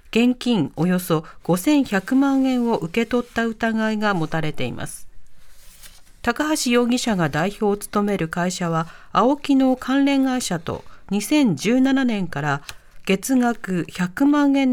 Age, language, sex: 40-59, Japanese, female